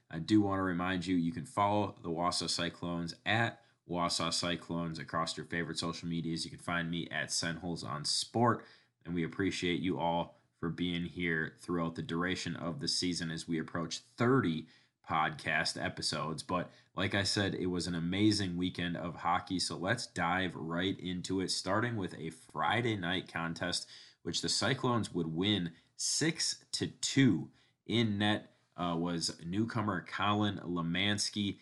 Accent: American